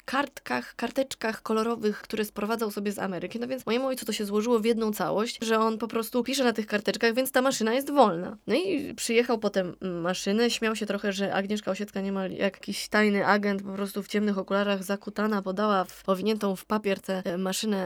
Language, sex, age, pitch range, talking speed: Polish, female, 20-39, 195-245 Hz, 195 wpm